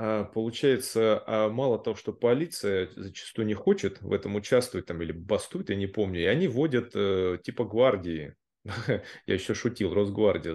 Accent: native